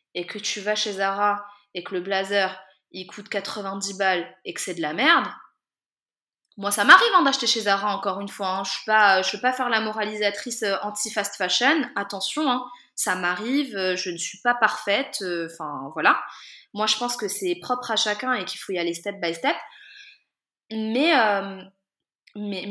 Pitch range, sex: 185-225 Hz, female